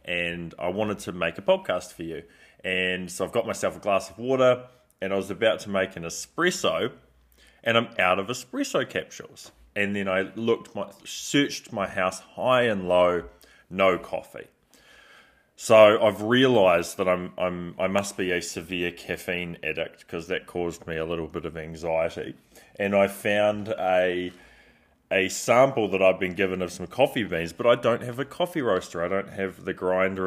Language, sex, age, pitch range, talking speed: English, male, 20-39, 90-100 Hz, 185 wpm